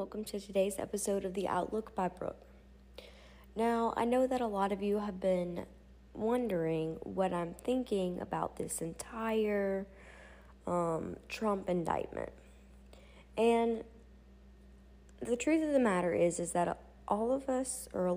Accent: American